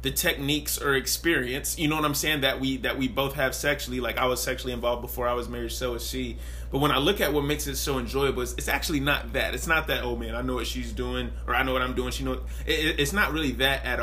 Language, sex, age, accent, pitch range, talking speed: English, male, 30-49, American, 115-140 Hz, 290 wpm